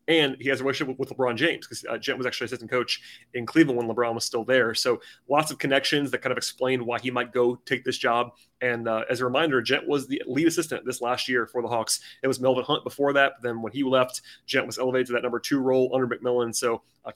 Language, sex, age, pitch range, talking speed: English, male, 30-49, 120-135 Hz, 265 wpm